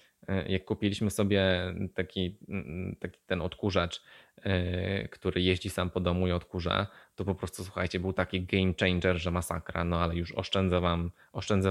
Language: Polish